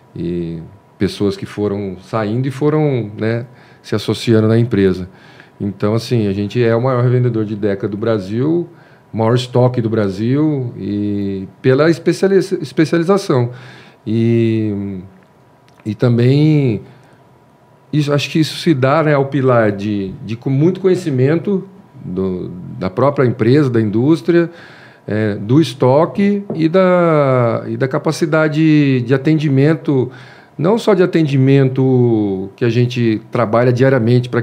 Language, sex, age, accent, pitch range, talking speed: Portuguese, male, 40-59, Brazilian, 110-145 Hz, 130 wpm